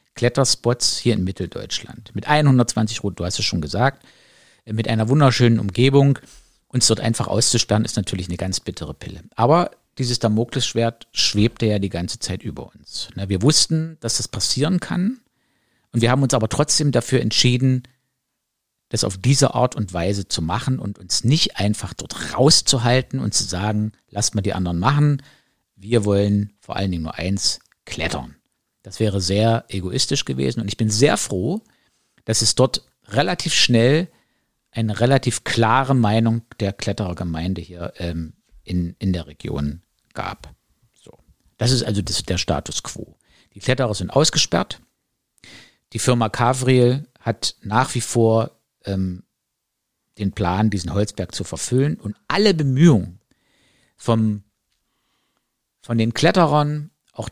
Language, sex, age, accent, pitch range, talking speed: German, male, 50-69, German, 100-130 Hz, 145 wpm